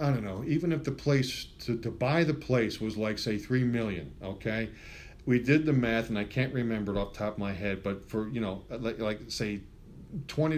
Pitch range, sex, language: 100-140 Hz, male, English